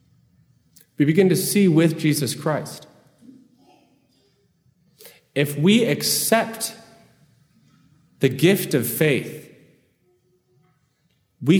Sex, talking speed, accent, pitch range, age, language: male, 80 wpm, American, 145-190 Hz, 40-59, English